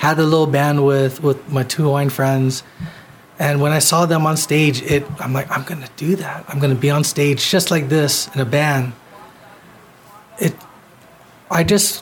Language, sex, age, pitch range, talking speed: English, male, 30-49, 140-170 Hz, 190 wpm